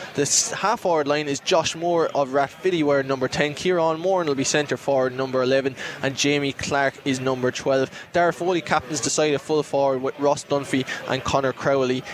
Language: English